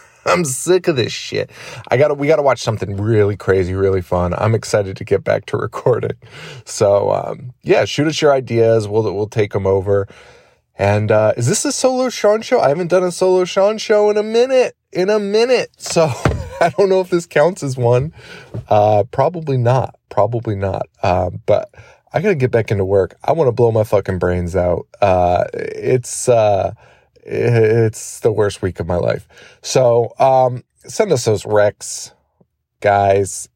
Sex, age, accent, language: male, 20-39, American, English